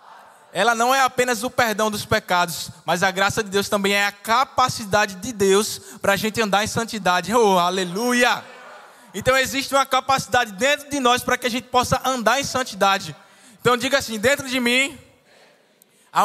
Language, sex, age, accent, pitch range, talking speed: Portuguese, male, 20-39, Brazilian, 195-245 Hz, 180 wpm